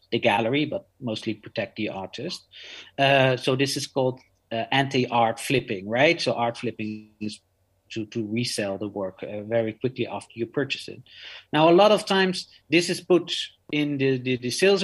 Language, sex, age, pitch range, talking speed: English, male, 50-69, 115-150 Hz, 180 wpm